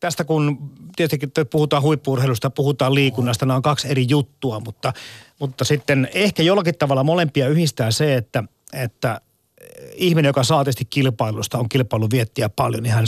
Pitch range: 125-150 Hz